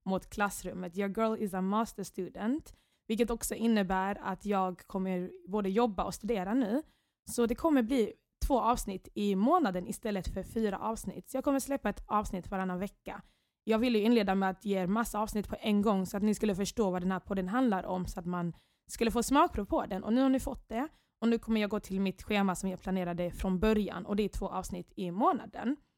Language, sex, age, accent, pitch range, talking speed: English, female, 20-39, Swedish, 190-235 Hz, 225 wpm